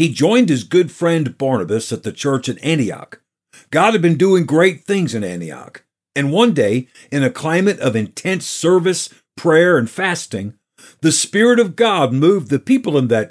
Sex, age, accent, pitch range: male, 50-69, American, 145-185 Hz